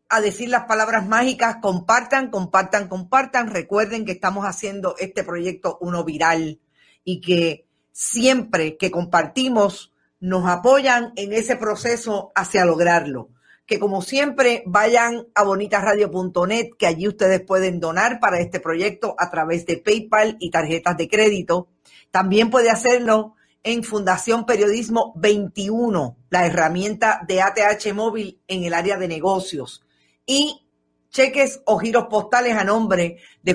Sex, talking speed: female, 135 wpm